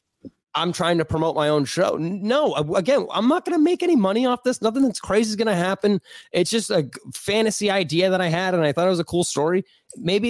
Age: 20-39